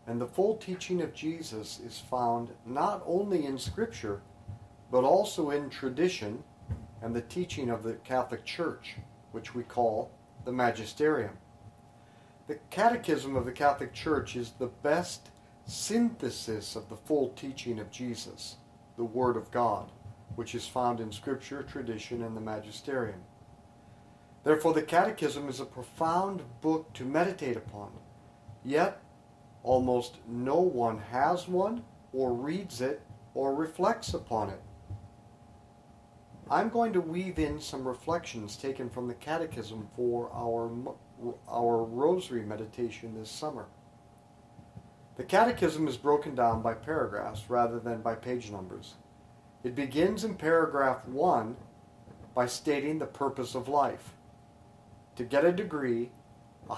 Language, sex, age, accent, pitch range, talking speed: English, male, 50-69, American, 115-145 Hz, 135 wpm